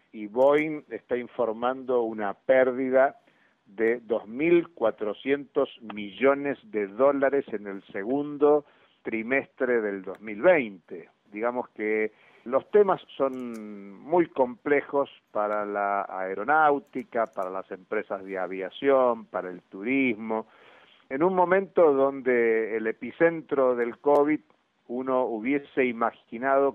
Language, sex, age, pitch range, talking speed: Spanish, male, 50-69, 110-140 Hz, 105 wpm